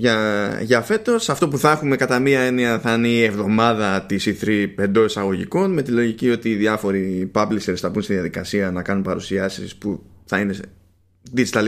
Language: Greek